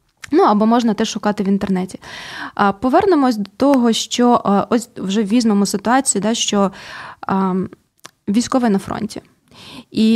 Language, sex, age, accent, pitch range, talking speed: Ukrainian, female, 20-39, native, 200-240 Hz, 140 wpm